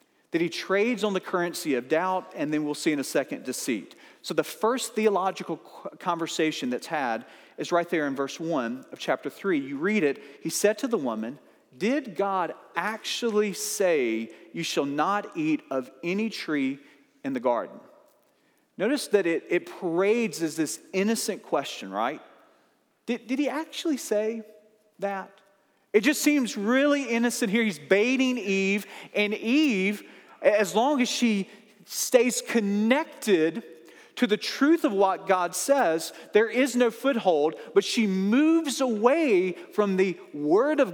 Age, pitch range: 40-59, 175-255 Hz